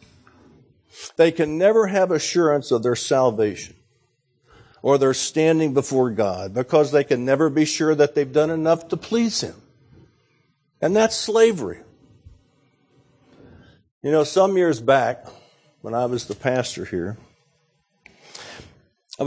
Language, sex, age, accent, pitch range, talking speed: English, male, 60-79, American, 125-160 Hz, 130 wpm